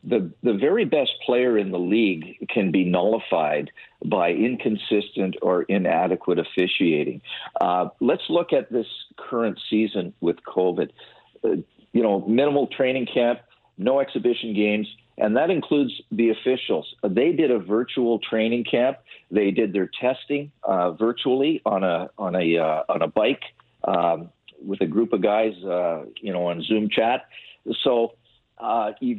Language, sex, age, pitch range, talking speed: English, male, 50-69, 100-125 Hz, 150 wpm